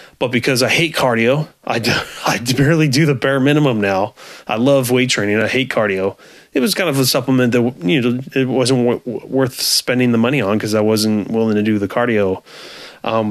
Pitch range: 110-130 Hz